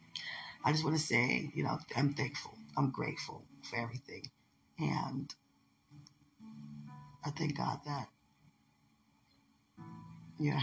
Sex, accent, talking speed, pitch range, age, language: female, American, 100 wpm, 145-180 Hz, 40-59, English